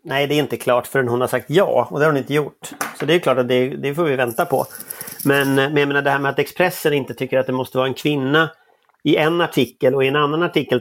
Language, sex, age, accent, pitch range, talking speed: Swedish, male, 30-49, native, 130-155 Hz, 285 wpm